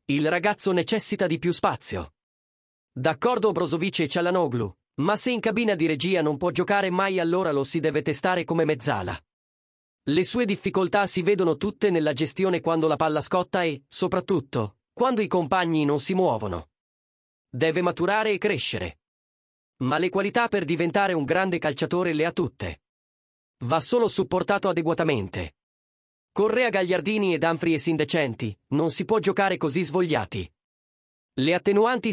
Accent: native